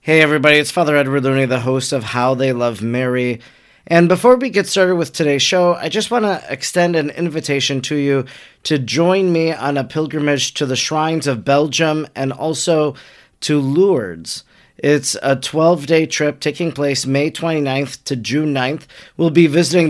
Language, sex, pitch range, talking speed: English, male, 135-170 Hz, 180 wpm